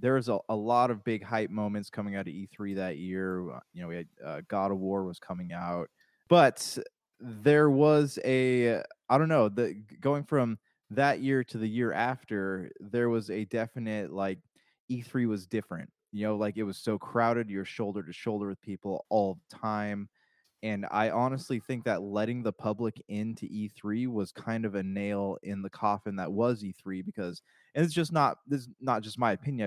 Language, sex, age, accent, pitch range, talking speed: English, male, 20-39, American, 100-120 Hz, 200 wpm